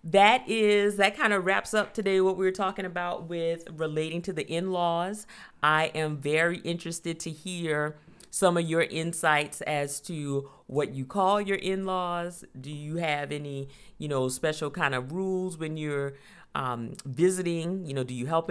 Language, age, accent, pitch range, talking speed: English, 40-59, American, 145-185 Hz, 175 wpm